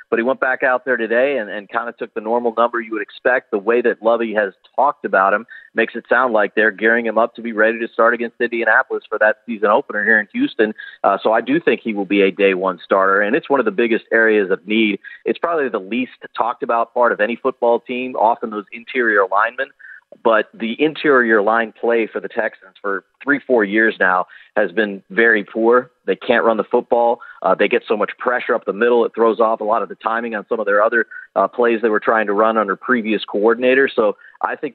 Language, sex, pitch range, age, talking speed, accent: English, male, 110-120 Hz, 40-59, 245 wpm, American